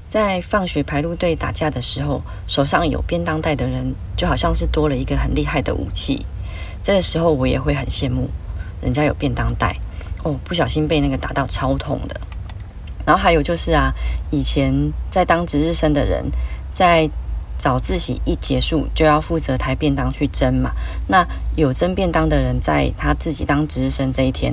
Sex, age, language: female, 30-49, Chinese